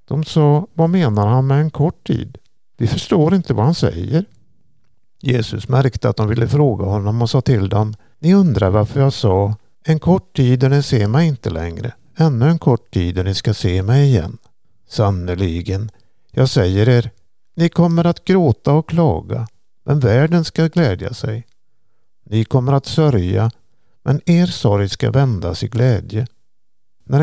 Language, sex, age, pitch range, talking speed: Swedish, male, 50-69, 105-145 Hz, 170 wpm